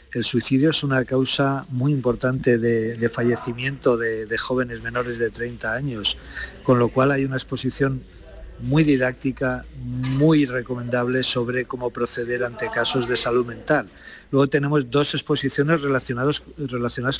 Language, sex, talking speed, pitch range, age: Spanish, male, 145 wpm, 115-135 Hz, 40-59